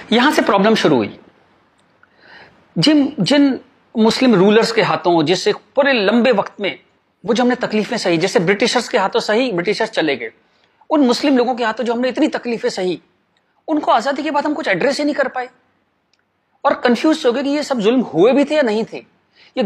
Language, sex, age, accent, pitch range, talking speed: Hindi, male, 30-49, native, 200-255 Hz, 200 wpm